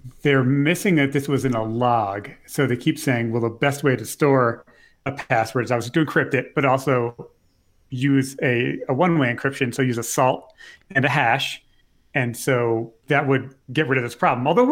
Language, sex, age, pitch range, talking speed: English, male, 40-59, 125-155 Hz, 210 wpm